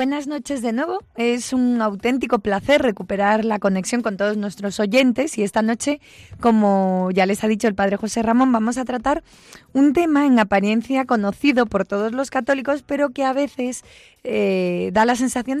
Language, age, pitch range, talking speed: Spanish, 20-39, 200-250 Hz, 180 wpm